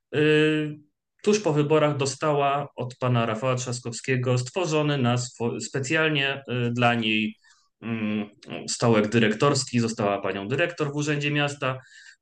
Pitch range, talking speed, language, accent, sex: 110-140 Hz, 100 wpm, Polish, native, male